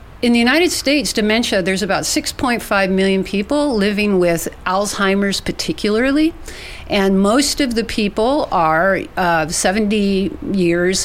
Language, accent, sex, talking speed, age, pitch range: English, American, female, 125 wpm, 50-69, 190-230 Hz